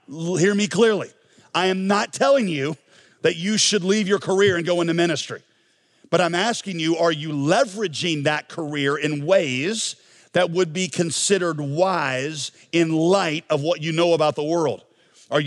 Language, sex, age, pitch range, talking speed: English, male, 50-69, 150-185 Hz, 170 wpm